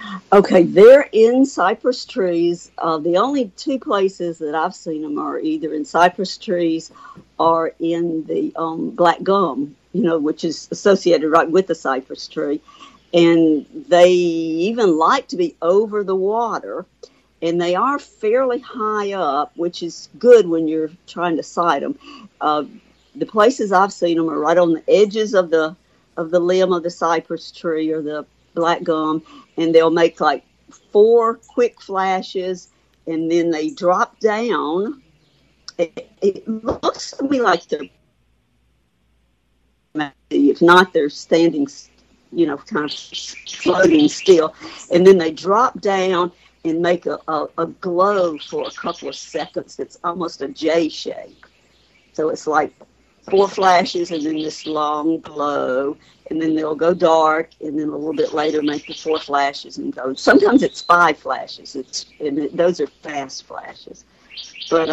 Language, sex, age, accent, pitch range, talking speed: English, female, 60-79, American, 160-200 Hz, 155 wpm